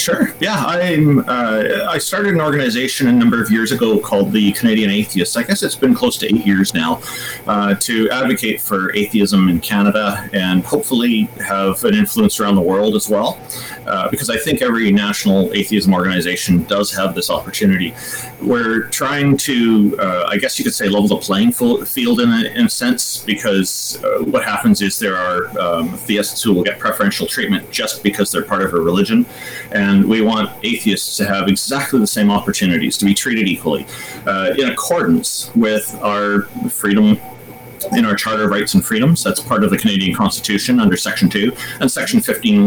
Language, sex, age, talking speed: English, male, 30-49, 190 wpm